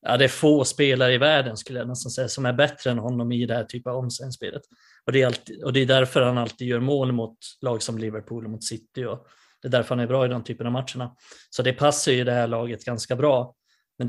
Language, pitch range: Swedish, 120-130 Hz